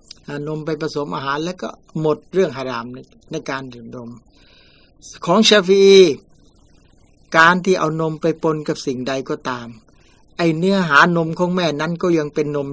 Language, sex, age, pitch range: Thai, male, 60-79, 135-170 Hz